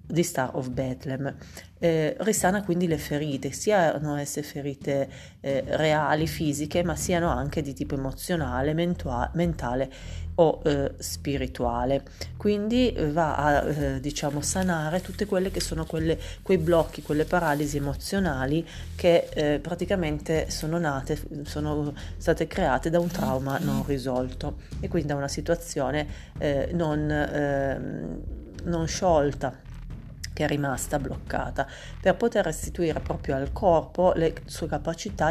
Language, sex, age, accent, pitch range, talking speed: Italian, female, 30-49, native, 140-170 Hz, 135 wpm